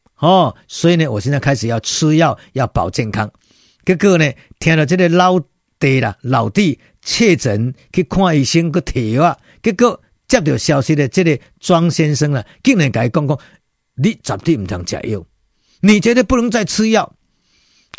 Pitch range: 135-195 Hz